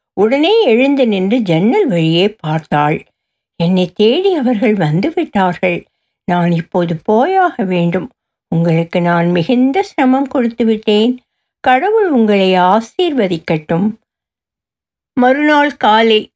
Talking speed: 90 wpm